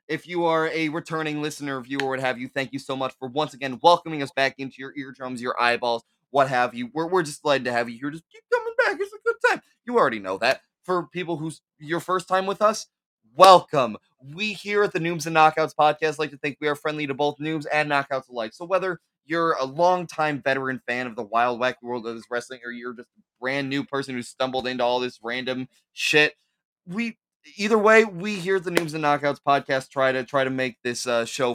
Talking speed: 240 wpm